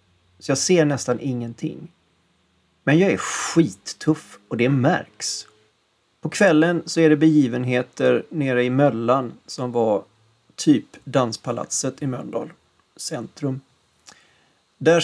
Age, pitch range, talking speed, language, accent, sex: 30-49, 115-155 Hz, 115 wpm, Swedish, native, male